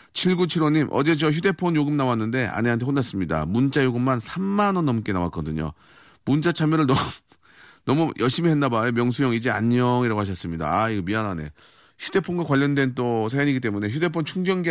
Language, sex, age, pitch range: Korean, male, 40-59, 115-165 Hz